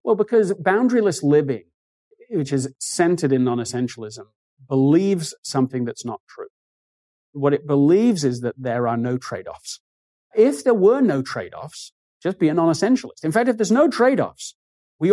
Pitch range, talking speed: 130-180 Hz, 155 wpm